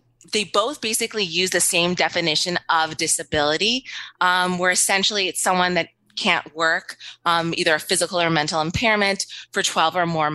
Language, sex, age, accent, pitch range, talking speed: English, female, 20-39, American, 165-200 Hz, 160 wpm